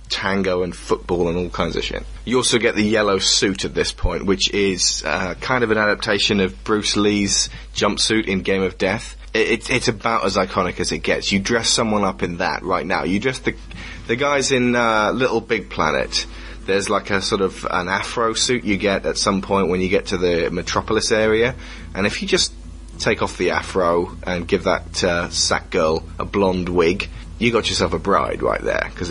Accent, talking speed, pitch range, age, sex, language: British, 210 wpm, 85-110 Hz, 20-39, male, English